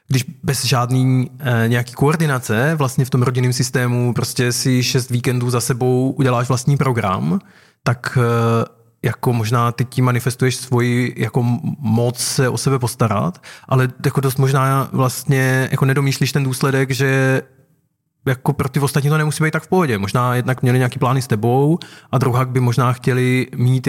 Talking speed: 170 wpm